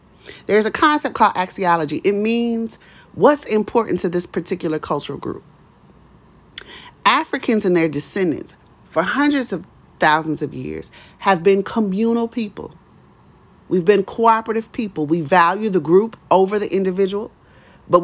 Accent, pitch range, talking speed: American, 165-225 Hz, 135 wpm